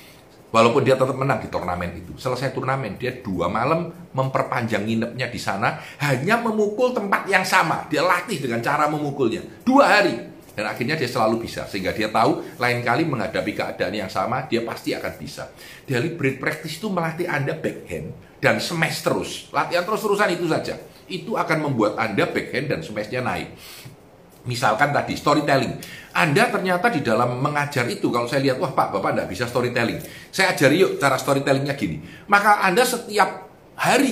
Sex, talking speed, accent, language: male, 165 wpm, native, Indonesian